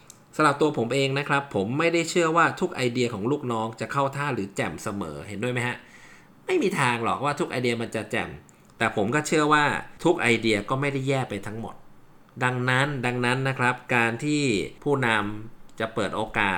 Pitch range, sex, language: 115-145 Hz, male, Thai